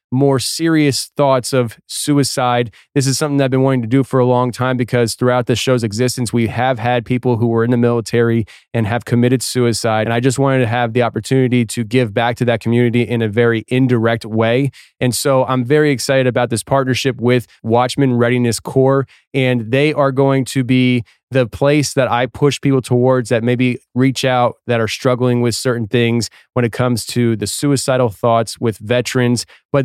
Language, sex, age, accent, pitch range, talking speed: English, male, 20-39, American, 120-135 Hz, 200 wpm